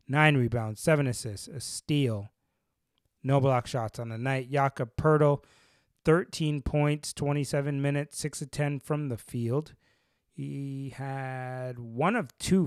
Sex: male